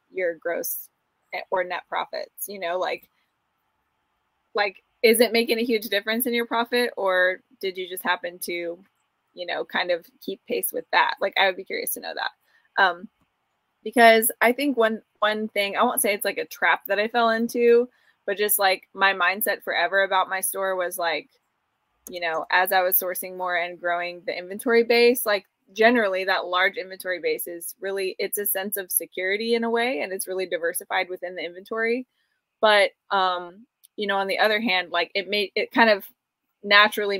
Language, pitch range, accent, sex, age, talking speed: English, 185-225 Hz, American, female, 20-39, 190 wpm